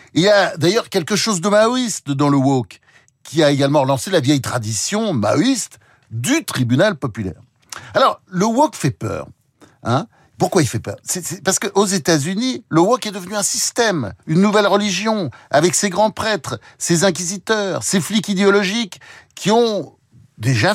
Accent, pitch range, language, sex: French, 130-210 Hz, French, male